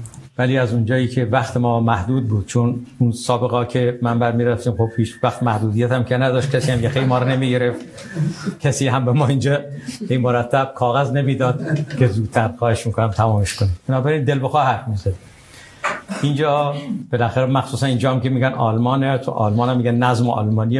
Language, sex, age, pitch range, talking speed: Persian, male, 60-79, 115-135 Hz, 175 wpm